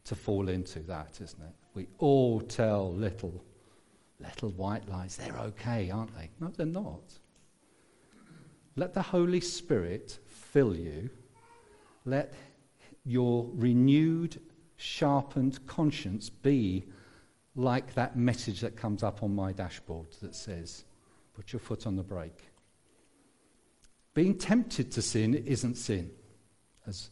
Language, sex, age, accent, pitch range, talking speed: English, male, 50-69, British, 100-140 Hz, 125 wpm